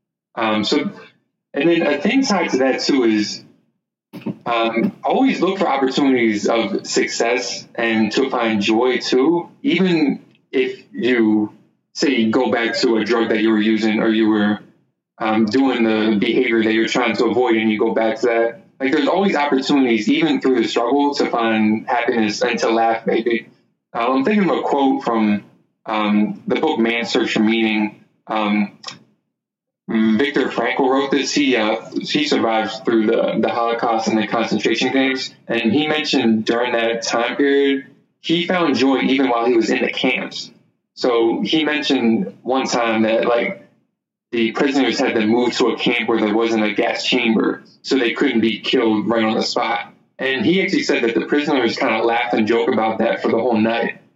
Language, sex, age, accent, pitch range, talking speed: English, male, 20-39, American, 110-135 Hz, 185 wpm